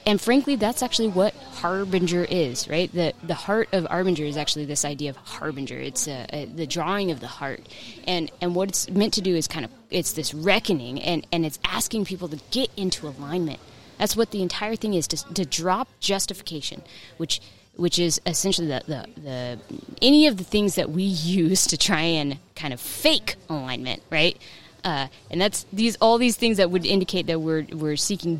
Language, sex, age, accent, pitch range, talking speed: English, female, 20-39, American, 155-200 Hz, 200 wpm